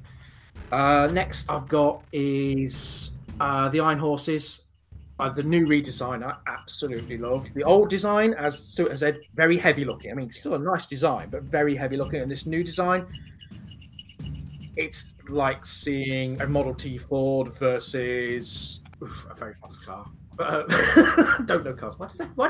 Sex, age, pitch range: male, 30-49, 100-155 Hz